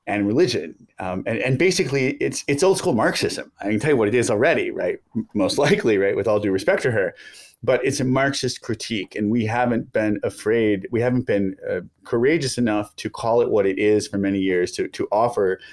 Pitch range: 105-140 Hz